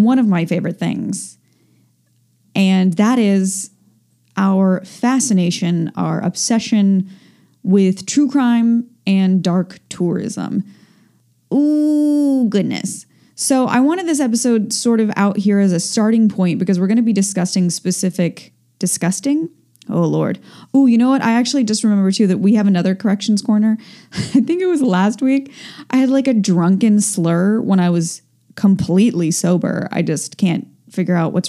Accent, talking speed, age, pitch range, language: American, 155 wpm, 10-29, 185-235 Hz, English